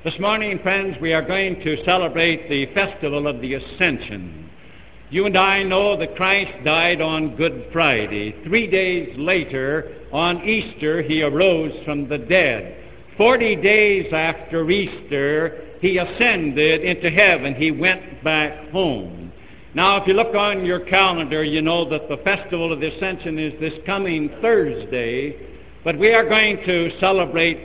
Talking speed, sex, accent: 150 wpm, male, American